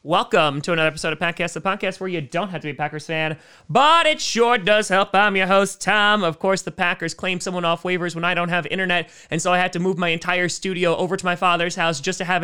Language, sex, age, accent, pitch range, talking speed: English, male, 30-49, American, 165-215 Hz, 270 wpm